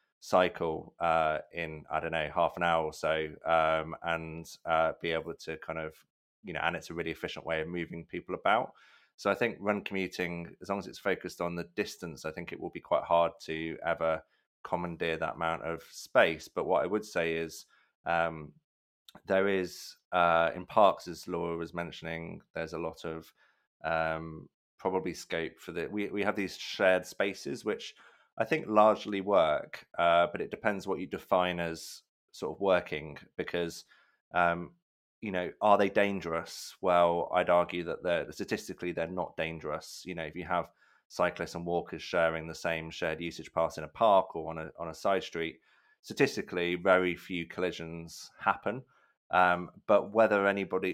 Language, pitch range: English, 80-90 Hz